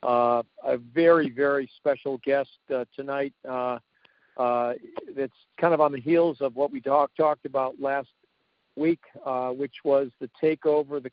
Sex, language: male, English